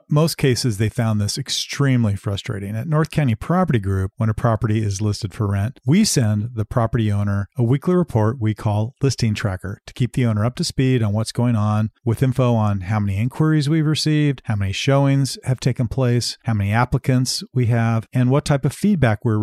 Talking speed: 205 wpm